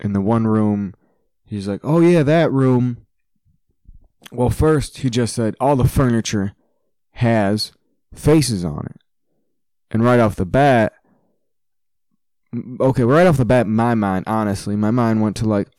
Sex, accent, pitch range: male, American, 100-130 Hz